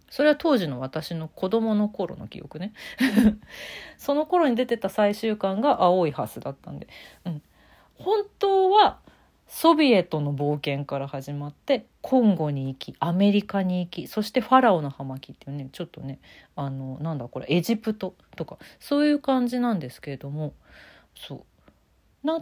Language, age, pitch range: Japanese, 40-59, 155-255 Hz